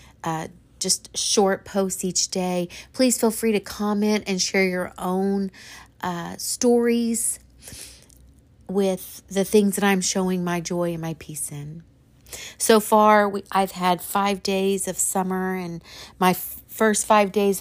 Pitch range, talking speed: 165-195 Hz, 150 wpm